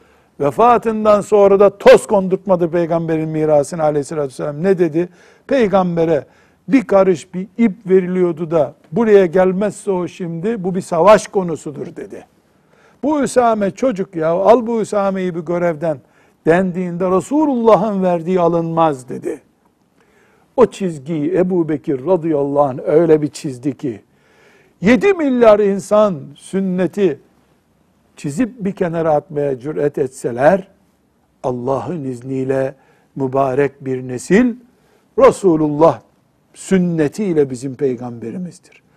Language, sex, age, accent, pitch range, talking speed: Turkish, male, 60-79, native, 145-195 Hz, 105 wpm